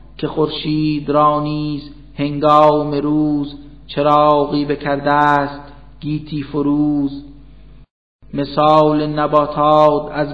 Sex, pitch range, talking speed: male, 145-150 Hz, 70 wpm